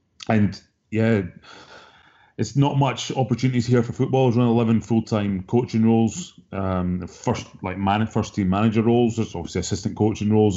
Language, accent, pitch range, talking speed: English, British, 95-110 Hz, 160 wpm